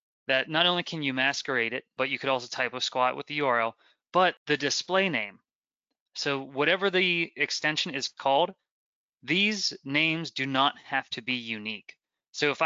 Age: 20-39